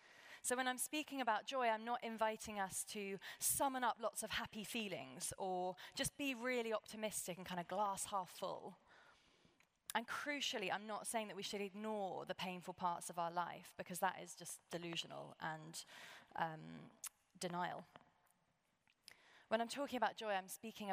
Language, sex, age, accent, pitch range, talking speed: English, female, 20-39, British, 180-245 Hz, 165 wpm